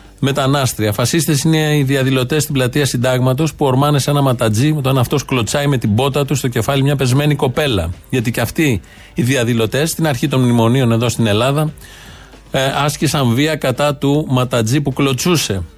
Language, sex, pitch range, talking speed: Greek, male, 125-145 Hz, 170 wpm